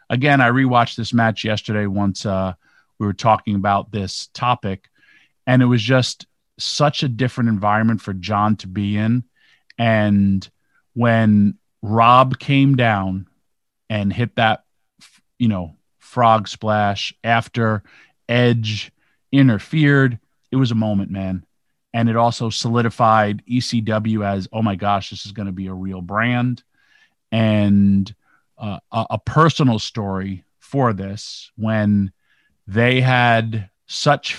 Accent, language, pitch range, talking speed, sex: American, English, 105-125 Hz, 135 wpm, male